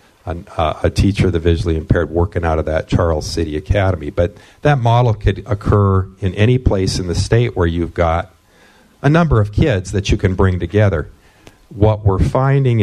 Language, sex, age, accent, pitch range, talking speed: English, male, 50-69, American, 90-105 Hz, 180 wpm